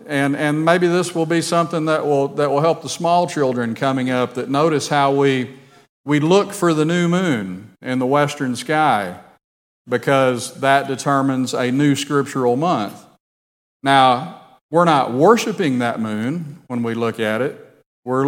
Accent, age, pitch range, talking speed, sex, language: American, 50-69, 120-150 Hz, 165 wpm, male, English